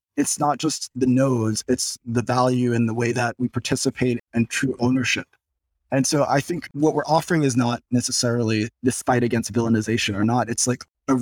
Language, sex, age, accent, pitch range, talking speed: English, male, 20-39, American, 115-130 Hz, 195 wpm